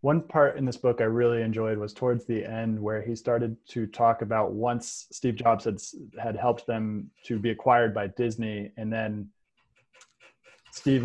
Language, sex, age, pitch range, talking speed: English, male, 20-39, 110-120 Hz, 180 wpm